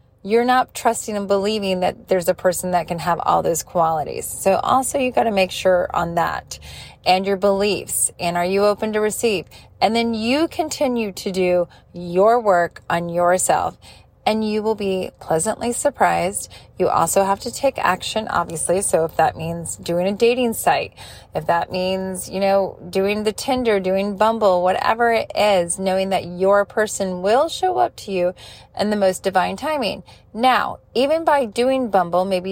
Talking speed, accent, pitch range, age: 175 wpm, American, 180-230 Hz, 30-49